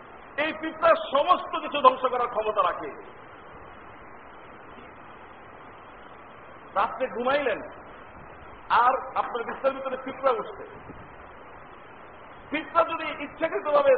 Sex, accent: male, native